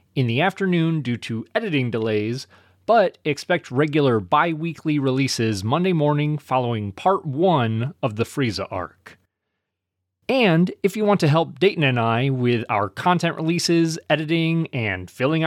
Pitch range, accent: 115-180 Hz, American